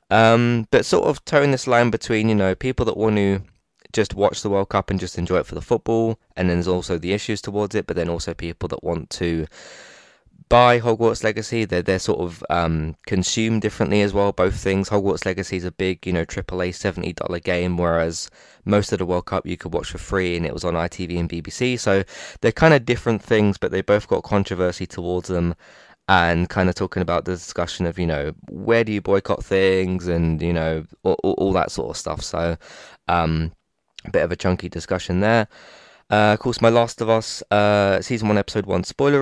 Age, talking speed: 20-39, 220 wpm